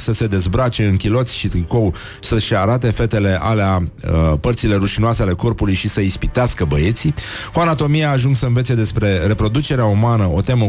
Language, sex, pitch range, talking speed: Romanian, male, 95-125 Hz, 170 wpm